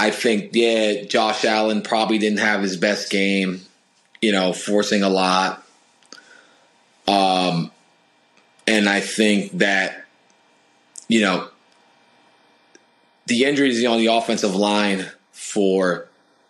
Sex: male